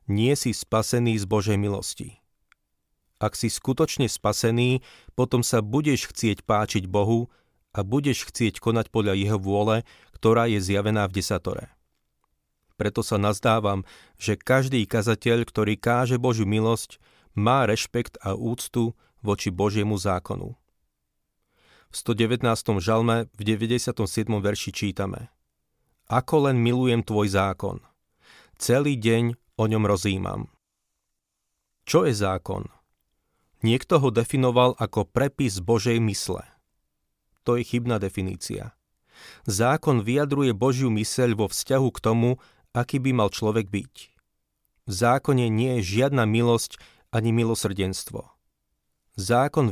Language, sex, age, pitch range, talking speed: Slovak, male, 40-59, 105-125 Hz, 120 wpm